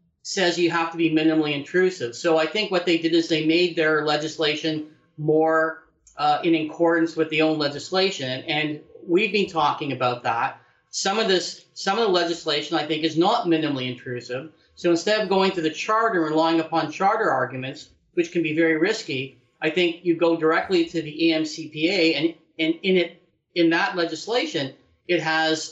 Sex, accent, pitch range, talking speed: male, American, 150-175 Hz, 180 wpm